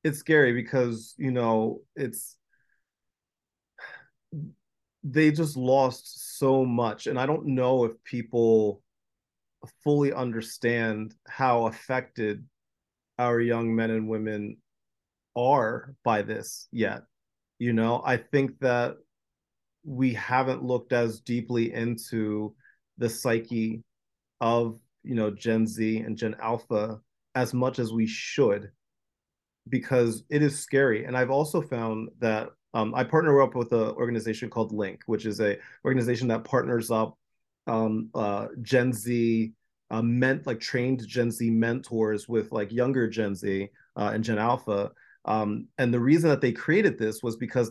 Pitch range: 110-130 Hz